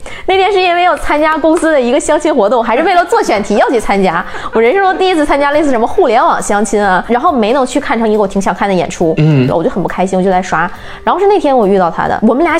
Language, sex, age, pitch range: Chinese, female, 20-39, 200-275 Hz